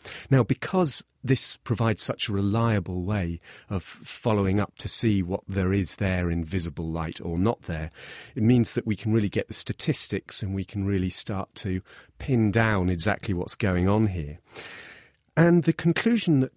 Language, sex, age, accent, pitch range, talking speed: English, male, 40-59, British, 95-120 Hz, 180 wpm